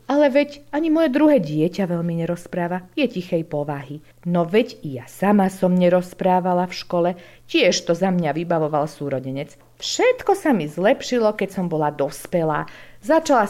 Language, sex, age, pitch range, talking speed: Slovak, female, 50-69, 145-195 Hz, 155 wpm